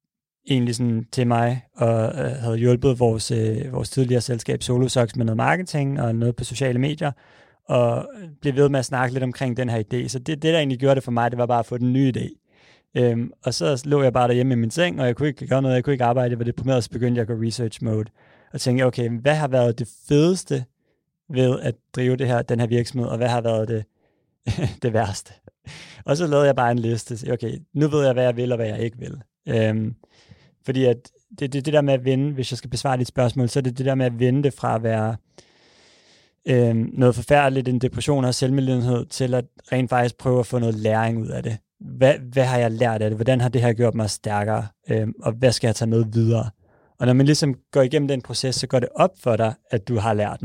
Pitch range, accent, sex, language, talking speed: 115-130 Hz, native, male, Danish, 250 wpm